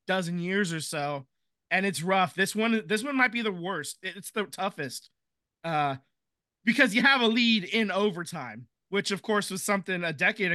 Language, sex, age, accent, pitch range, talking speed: English, male, 20-39, American, 165-205 Hz, 190 wpm